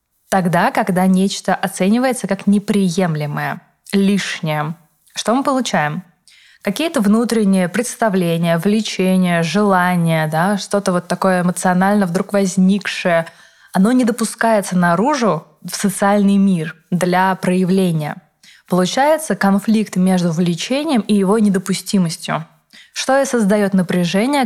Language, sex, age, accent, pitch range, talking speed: Russian, female, 20-39, native, 180-210 Hz, 100 wpm